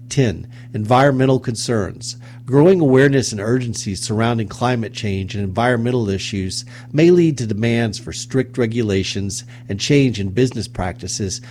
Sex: male